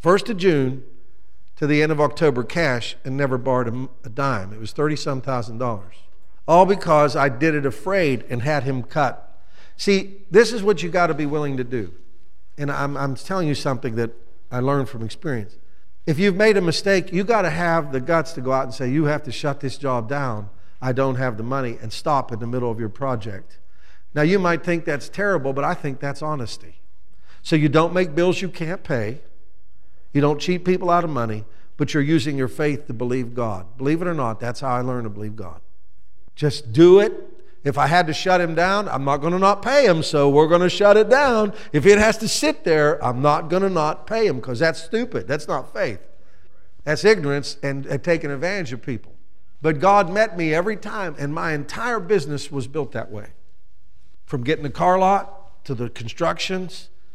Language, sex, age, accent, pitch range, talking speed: English, male, 50-69, American, 125-175 Hz, 215 wpm